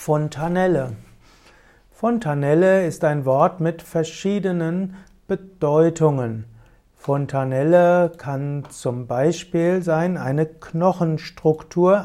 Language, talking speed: German, 75 wpm